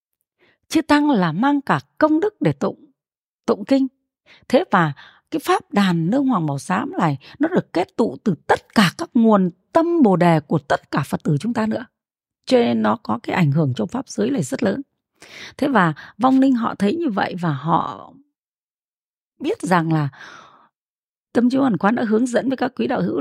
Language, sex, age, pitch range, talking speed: Vietnamese, female, 30-49, 175-265 Hz, 205 wpm